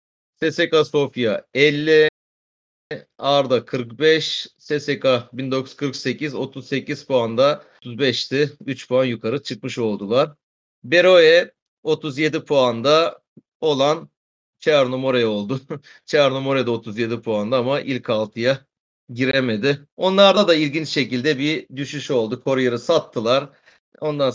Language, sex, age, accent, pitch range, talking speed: Turkish, male, 40-59, native, 120-150 Hz, 95 wpm